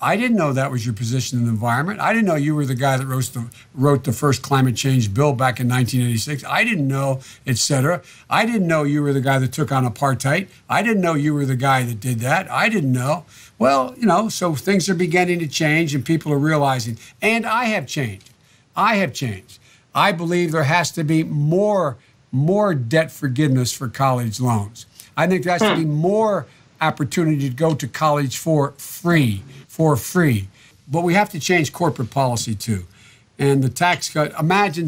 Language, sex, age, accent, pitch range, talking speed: English, male, 60-79, American, 125-160 Hz, 205 wpm